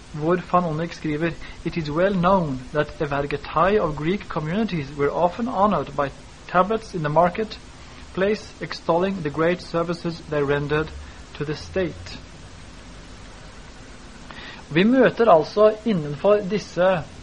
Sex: male